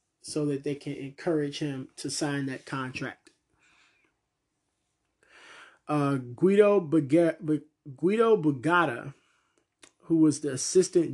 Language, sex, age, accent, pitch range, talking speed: English, male, 20-39, American, 135-160 Hz, 110 wpm